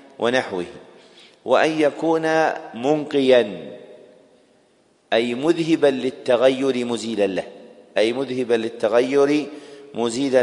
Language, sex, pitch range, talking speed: English, male, 120-145 Hz, 75 wpm